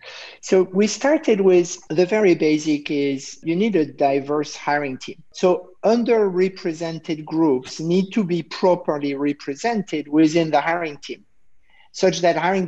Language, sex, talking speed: English, male, 135 wpm